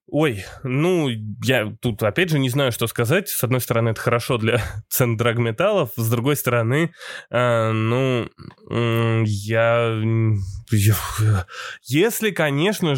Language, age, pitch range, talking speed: Russian, 20-39, 115-150 Hz, 135 wpm